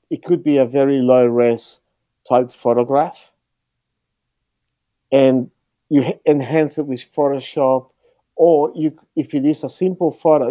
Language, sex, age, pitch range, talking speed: English, male, 50-69, 125-140 Hz, 130 wpm